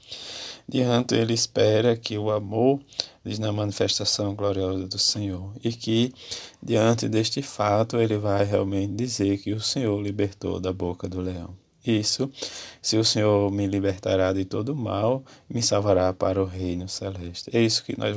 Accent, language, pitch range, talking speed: Brazilian, Portuguese, 95-110 Hz, 160 wpm